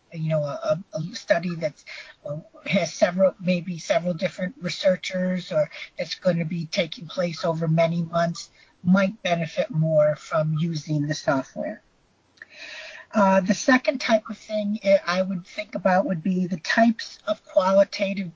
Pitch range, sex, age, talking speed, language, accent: 170-220 Hz, female, 50-69, 145 wpm, English, American